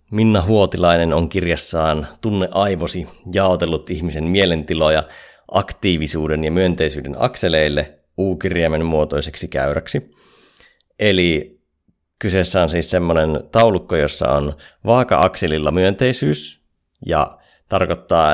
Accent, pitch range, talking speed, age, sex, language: native, 80-100 Hz, 90 wpm, 30-49, male, Finnish